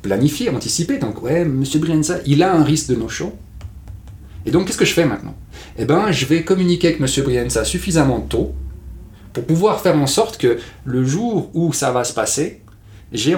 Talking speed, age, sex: 195 wpm, 30-49, male